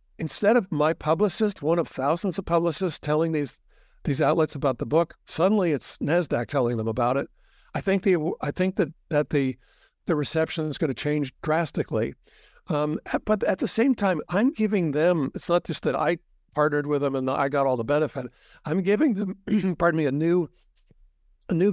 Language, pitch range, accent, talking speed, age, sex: English, 145-175 Hz, American, 195 wpm, 60-79, male